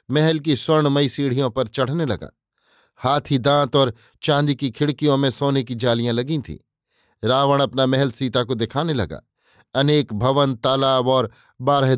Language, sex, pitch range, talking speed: Hindi, male, 125-150 Hz, 155 wpm